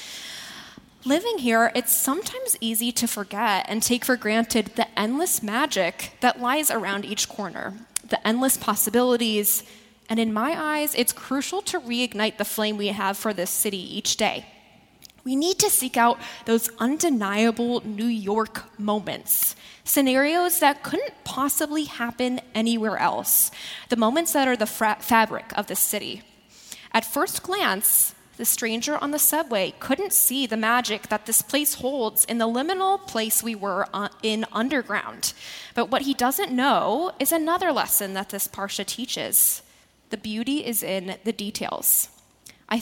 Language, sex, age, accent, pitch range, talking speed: English, female, 10-29, American, 215-275 Hz, 150 wpm